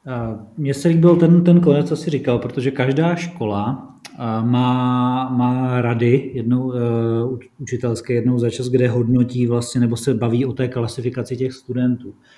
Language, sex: Czech, male